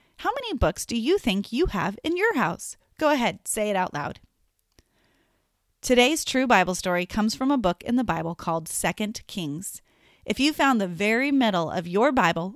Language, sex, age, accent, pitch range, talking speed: English, female, 30-49, American, 185-270 Hz, 190 wpm